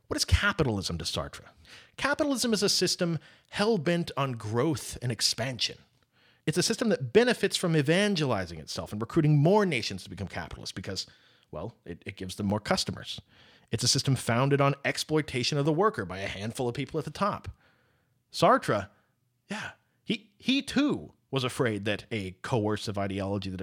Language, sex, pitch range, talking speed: English, male, 105-165 Hz, 170 wpm